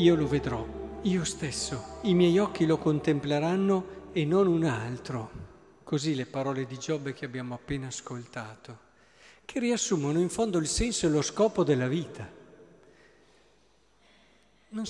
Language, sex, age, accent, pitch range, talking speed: Italian, male, 50-69, native, 130-185 Hz, 140 wpm